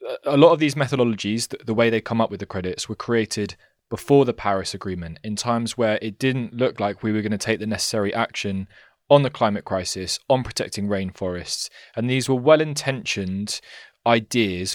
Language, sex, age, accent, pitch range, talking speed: English, male, 20-39, British, 100-120 Hz, 185 wpm